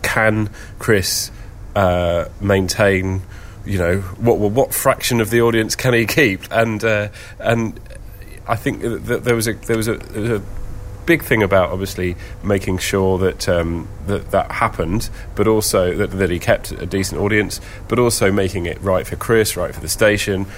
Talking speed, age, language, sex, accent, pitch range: 180 wpm, 30-49, English, male, British, 95-110 Hz